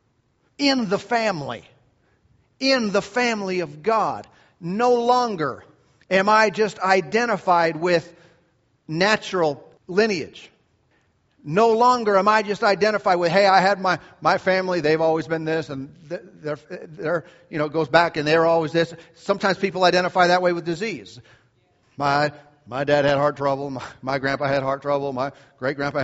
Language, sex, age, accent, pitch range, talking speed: English, male, 40-59, American, 140-190 Hz, 155 wpm